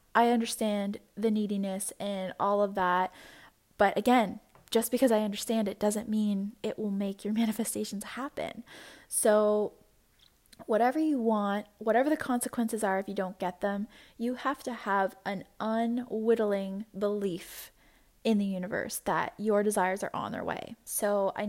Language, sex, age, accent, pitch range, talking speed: English, female, 10-29, American, 200-230 Hz, 155 wpm